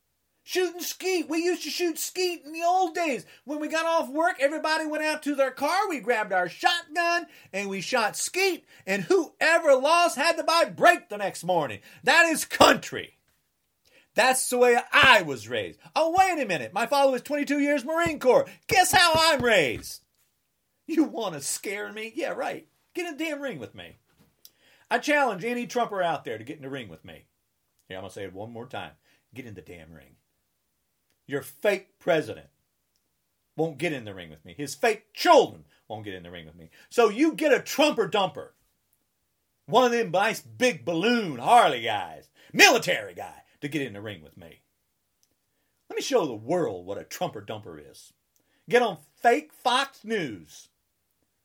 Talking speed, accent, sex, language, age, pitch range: 190 wpm, American, male, English, 40-59, 200-330 Hz